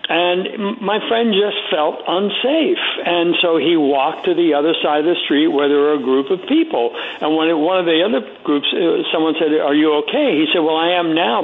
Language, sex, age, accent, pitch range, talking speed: English, male, 60-79, American, 155-260 Hz, 225 wpm